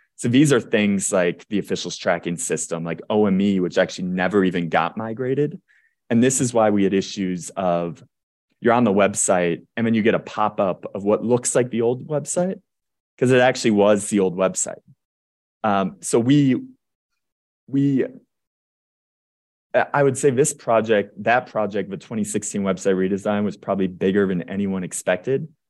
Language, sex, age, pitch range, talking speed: English, male, 20-39, 95-125 Hz, 165 wpm